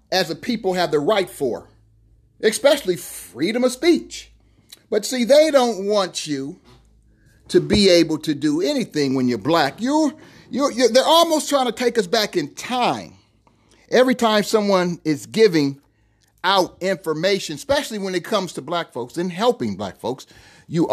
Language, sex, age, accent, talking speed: English, male, 40-59, American, 160 wpm